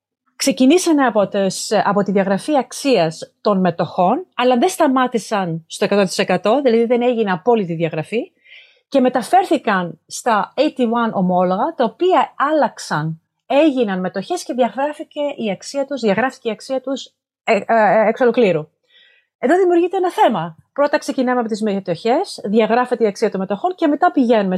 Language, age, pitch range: Greek, 30-49, 185-275 Hz